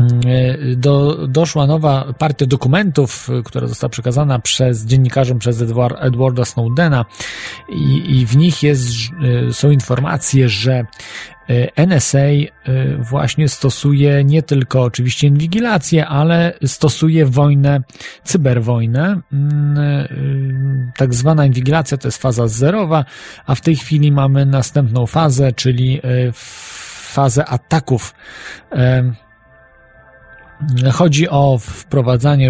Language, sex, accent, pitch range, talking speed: Polish, male, native, 125-145 Hz, 95 wpm